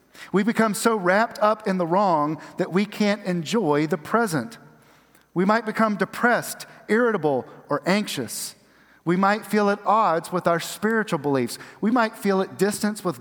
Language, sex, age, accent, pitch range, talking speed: English, male, 40-59, American, 160-205 Hz, 165 wpm